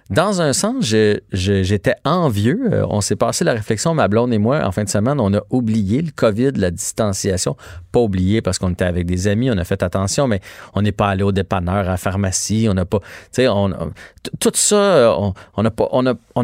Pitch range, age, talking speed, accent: 100-140 Hz, 30-49, 190 wpm, Canadian